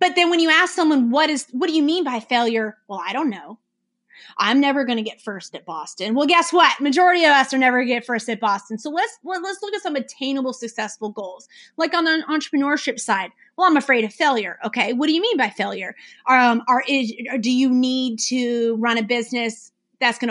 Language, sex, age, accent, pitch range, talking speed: English, female, 30-49, American, 225-290 Hz, 230 wpm